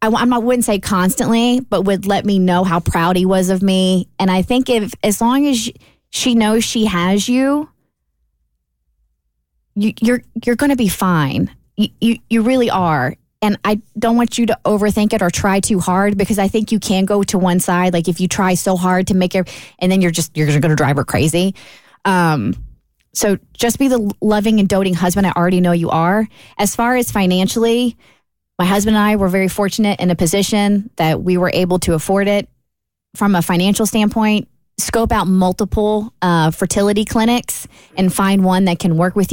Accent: American